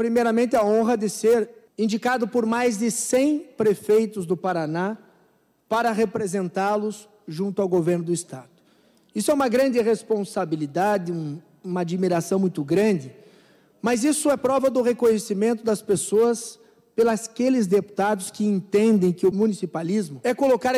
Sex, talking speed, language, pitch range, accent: male, 135 wpm, Portuguese, 190-240 Hz, Brazilian